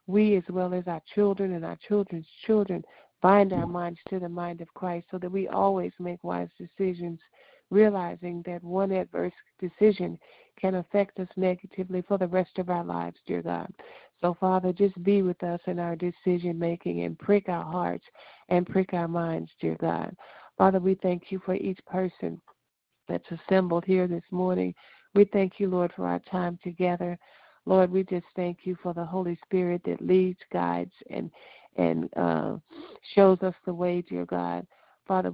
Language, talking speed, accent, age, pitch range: English, 175 wpm, American, 50-69, 170-190 Hz